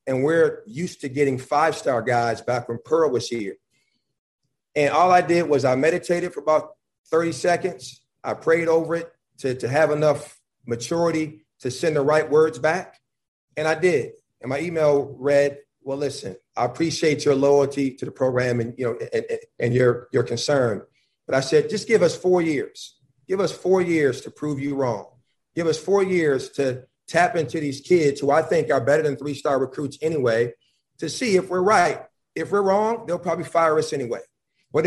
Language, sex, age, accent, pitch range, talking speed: English, male, 40-59, American, 135-180 Hz, 190 wpm